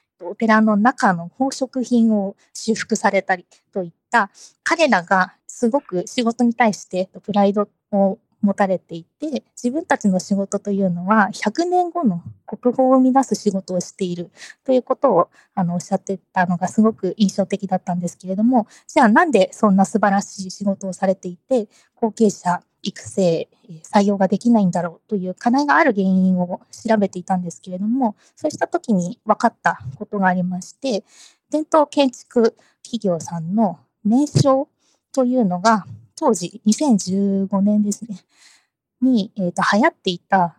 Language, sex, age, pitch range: Japanese, female, 20-39, 185-240 Hz